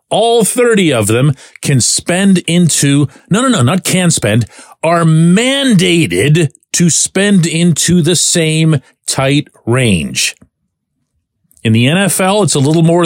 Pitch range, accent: 120-175 Hz, American